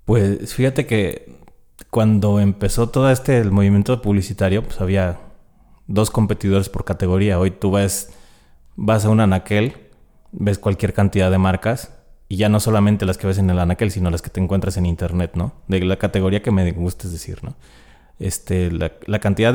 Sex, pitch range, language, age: male, 95-110 Hz, Spanish, 30-49